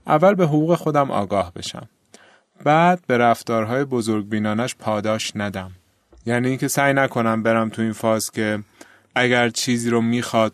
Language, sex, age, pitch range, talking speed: Persian, male, 30-49, 110-140 Hz, 150 wpm